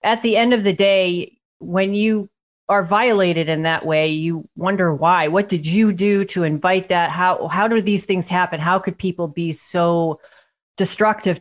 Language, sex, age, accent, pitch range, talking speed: English, female, 30-49, American, 165-195 Hz, 185 wpm